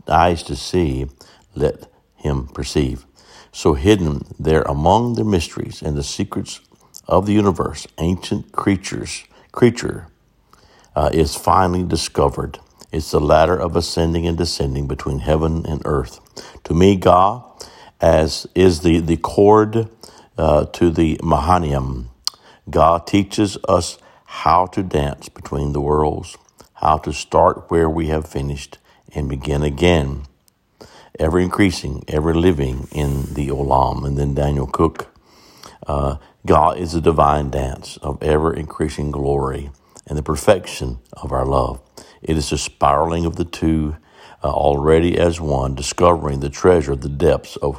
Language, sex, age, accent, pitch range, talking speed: English, male, 60-79, American, 70-85 Hz, 135 wpm